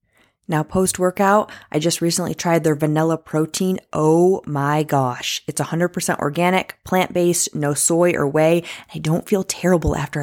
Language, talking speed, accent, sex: English, 155 wpm, American, female